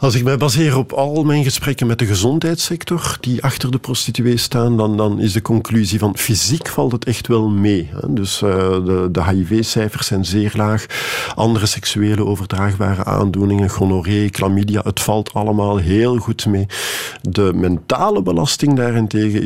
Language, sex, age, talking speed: Dutch, male, 50-69, 160 wpm